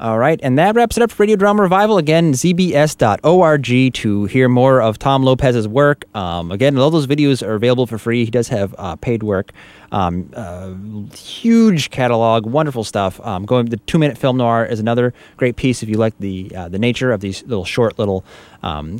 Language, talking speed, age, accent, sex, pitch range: English, 200 wpm, 30-49, American, male, 105-135 Hz